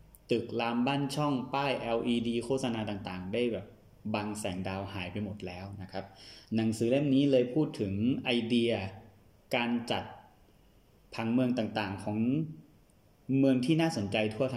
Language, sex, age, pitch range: Thai, male, 20-39, 105-120 Hz